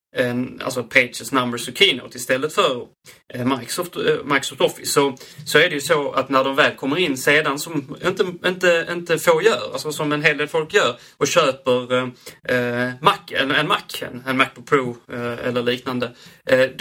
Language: Swedish